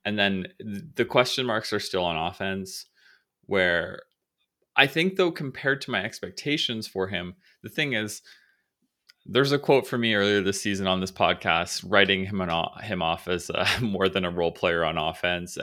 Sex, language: male, English